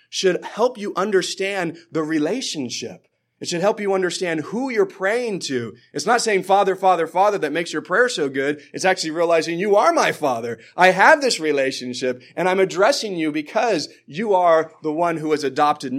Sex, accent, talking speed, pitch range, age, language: male, American, 190 wpm, 150-195 Hz, 30-49, English